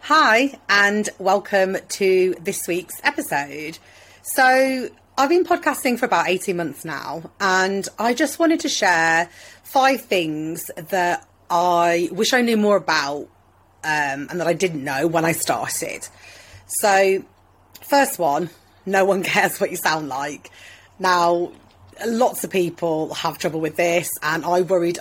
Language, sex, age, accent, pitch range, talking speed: English, female, 30-49, British, 155-200 Hz, 145 wpm